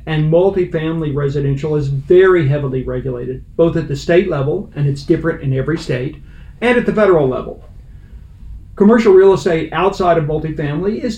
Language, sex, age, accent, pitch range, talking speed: English, male, 50-69, American, 145-180 Hz, 160 wpm